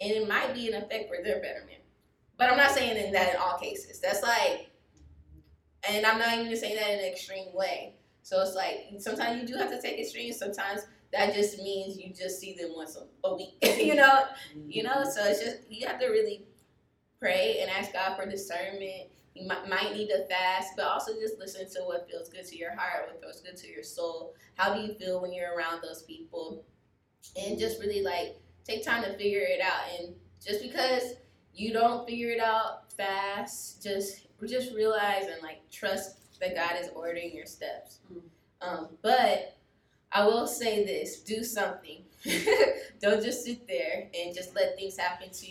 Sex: female